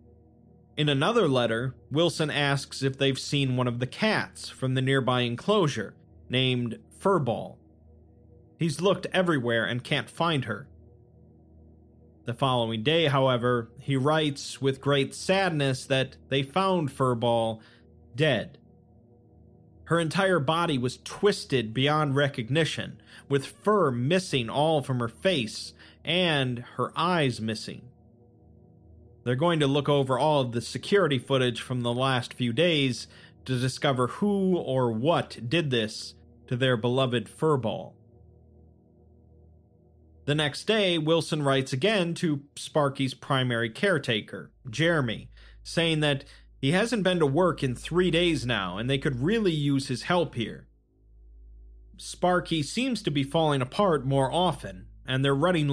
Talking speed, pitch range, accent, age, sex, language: 135 wpm, 115-155 Hz, American, 30-49, male, English